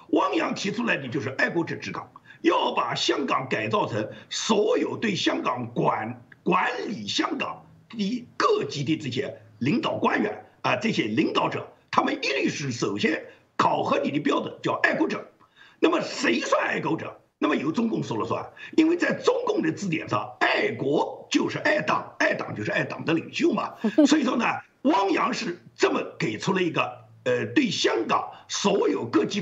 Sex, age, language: male, 50-69, Chinese